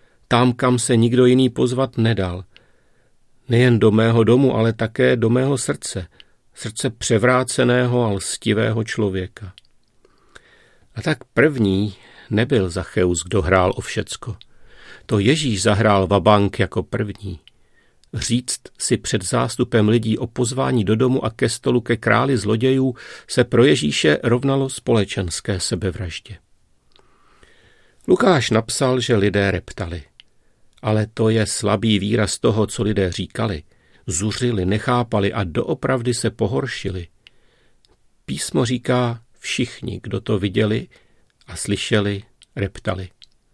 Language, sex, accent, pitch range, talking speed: Czech, male, native, 100-125 Hz, 120 wpm